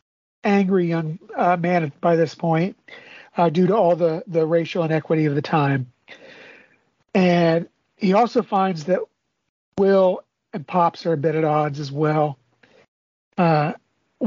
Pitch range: 170-210 Hz